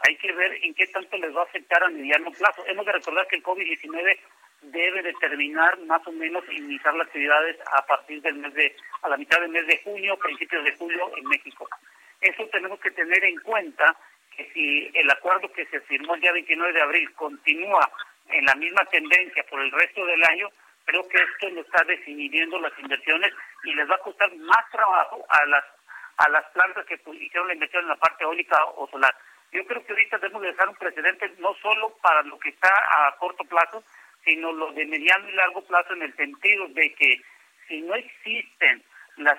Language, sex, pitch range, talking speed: Spanish, male, 160-200 Hz, 205 wpm